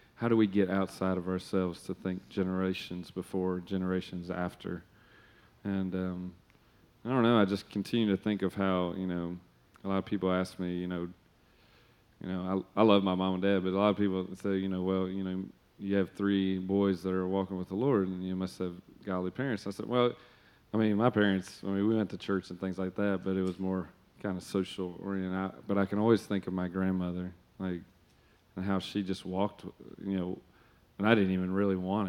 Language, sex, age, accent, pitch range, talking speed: English, male, 30-49, American, 90-100 Hz, 220 wpm